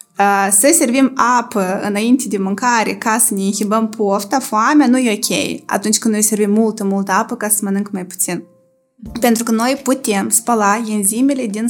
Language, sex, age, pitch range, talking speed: Romanian, female, 20-39, 200-240 Hz, 180 wpm